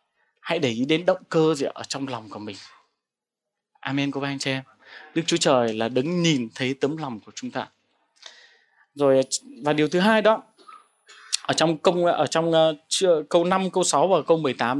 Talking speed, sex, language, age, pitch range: 200 wpm, male, Vietnamese, 20-39, 140-200 Hz